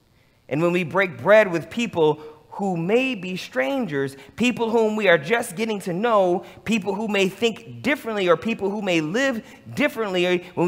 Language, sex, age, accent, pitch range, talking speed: English, male, 30-49, American, 150-205 Hz, 175 wpm